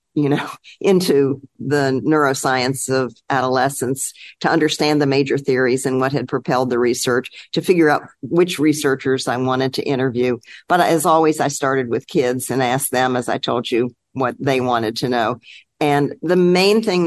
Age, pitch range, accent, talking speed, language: 50-69, 130-155 Hz, American, 175 wpm, English